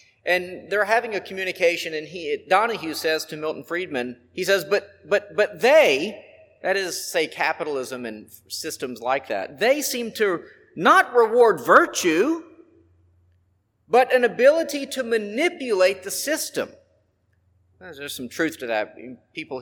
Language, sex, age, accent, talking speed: English, male, 40-59, American, 140 wpm